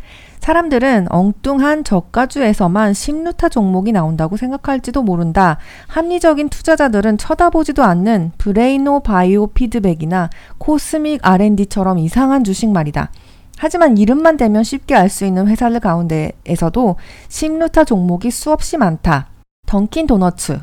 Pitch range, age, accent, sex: 185-275 Hz, 40-59, native, female